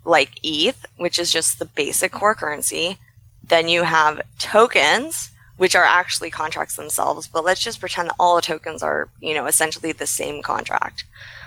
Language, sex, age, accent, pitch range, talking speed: English, female, 20-39, American, 120-185 Hz, 175 wpm